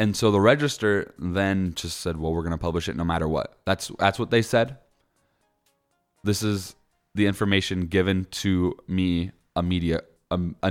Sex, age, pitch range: male, 10-29, 85-100 Hz